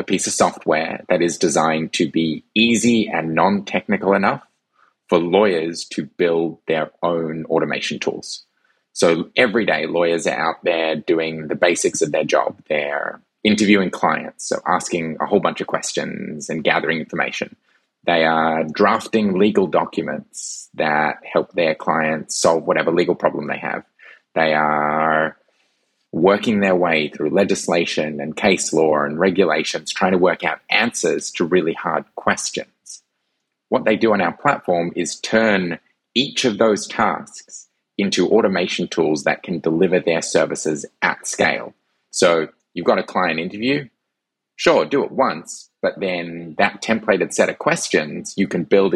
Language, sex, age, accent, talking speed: English, male, 20-39, Australian, 155 wpm